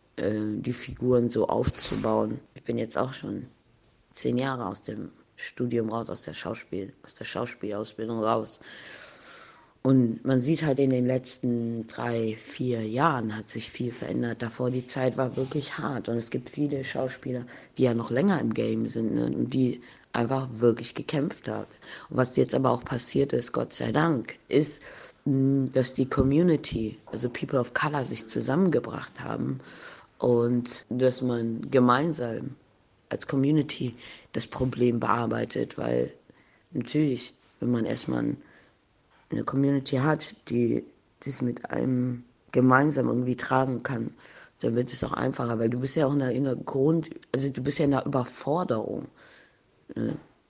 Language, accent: German, German